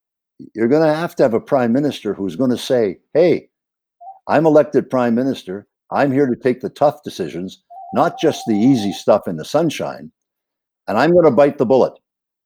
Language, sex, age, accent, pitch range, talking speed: English, male, 60-79, American, 115-150 Hz, 195 wpm